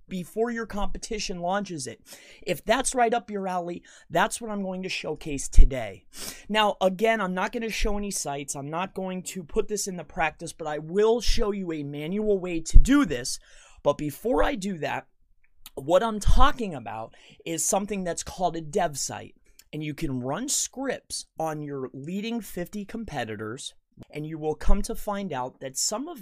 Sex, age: male, 30-49